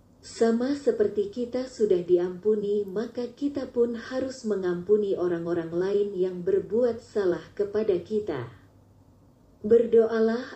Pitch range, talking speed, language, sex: 185-230 Hz, 100 wpm, Indonesian, female